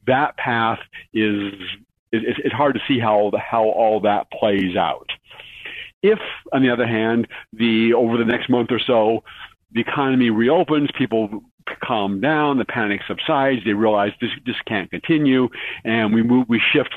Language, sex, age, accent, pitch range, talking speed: English, male, 50-69, American, 110-135 Hz, 165 wpm